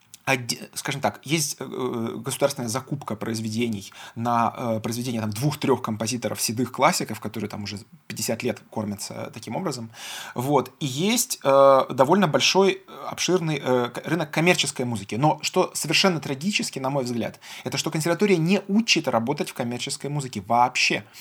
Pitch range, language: 115-160 Hz, Russian